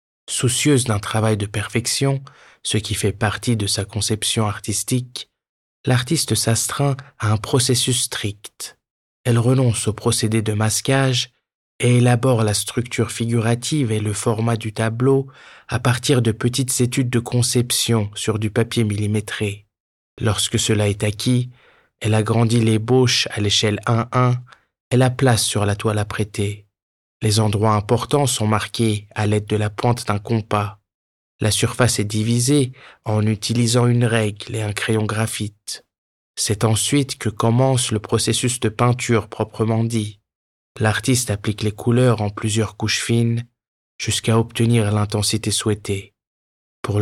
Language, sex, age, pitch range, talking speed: German, male, 20-39, 105-120 Hz, 140 wpm